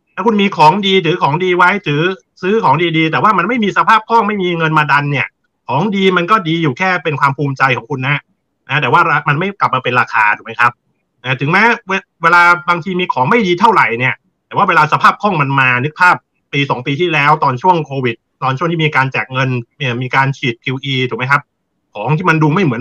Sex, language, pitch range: male, Thai, 140-175 Hz